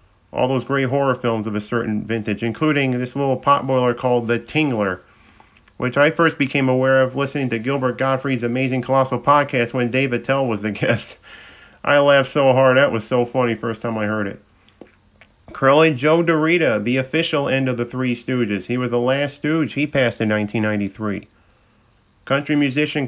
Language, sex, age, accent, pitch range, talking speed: English, male, 40-59, American, 110-145 Hz, 185 wpm